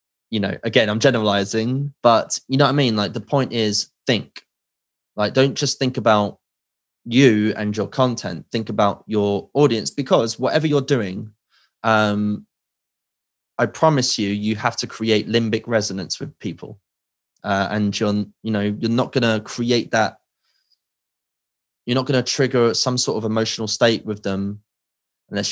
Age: 20-39